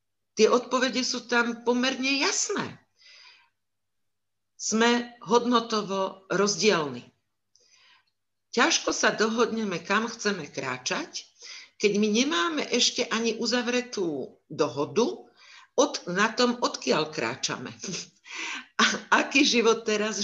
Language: Czech